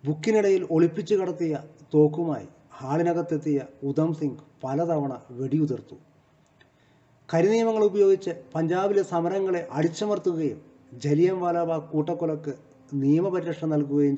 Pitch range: 135-170 Hz